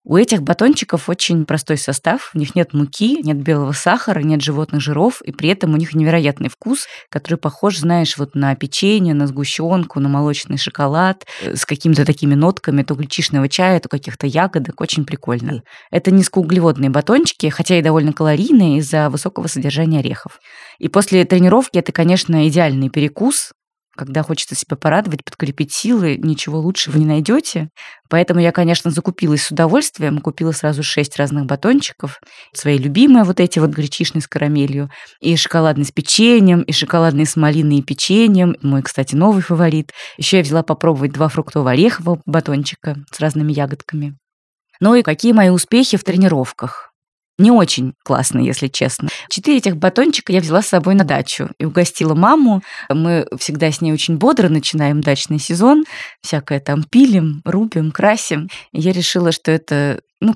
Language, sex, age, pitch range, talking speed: Russian, female, 20-39, 150-185 Hz, 160 wpm